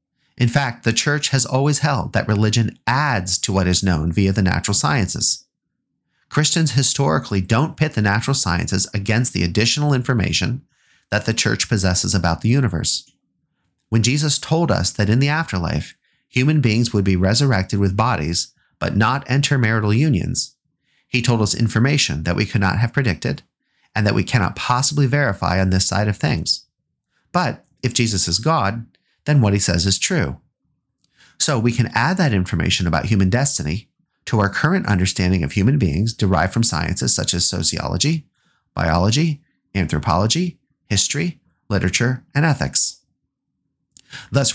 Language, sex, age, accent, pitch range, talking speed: English, male, 30-49, American, 95-130 Hz, 160 wpm